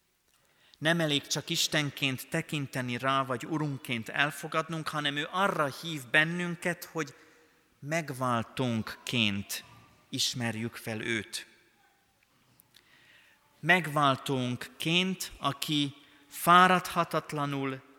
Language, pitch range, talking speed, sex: Hungarian, 120-155 Hz, 75 wpm, male